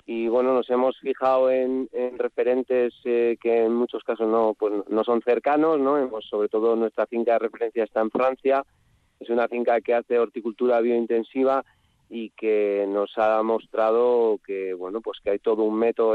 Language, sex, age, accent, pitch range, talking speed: Spanish, male, 30-49, Spanish, 110-125 Hz, 180 wpm